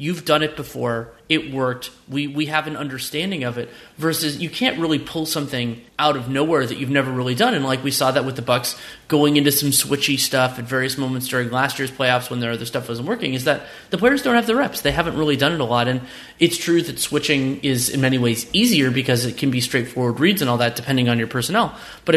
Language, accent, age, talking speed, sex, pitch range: English, American, 30-49, 250 wpm, male, 130-165 Hz